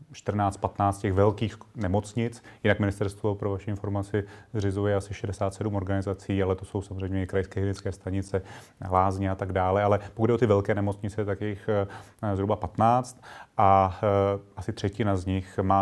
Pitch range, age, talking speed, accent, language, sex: 95-105 Hz, 30-49, 165 wpm, native, Czech, male